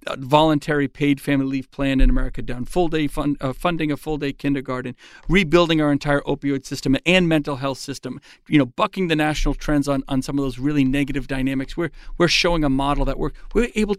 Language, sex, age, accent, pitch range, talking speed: English, male, 40-59, American, 135-170 Hz, 215 wpm